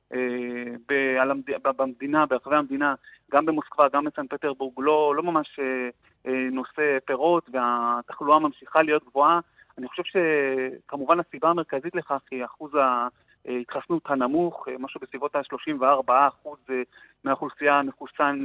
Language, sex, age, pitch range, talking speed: Hebrew, male, 30-49, 130-160 Hz, 110 wpm